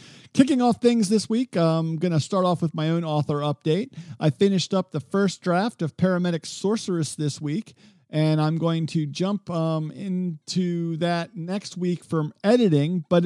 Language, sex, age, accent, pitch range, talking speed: English, male, 50-69, American, 140-185 Hz, 175 wpm